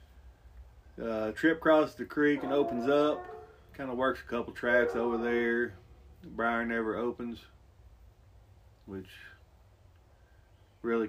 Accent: American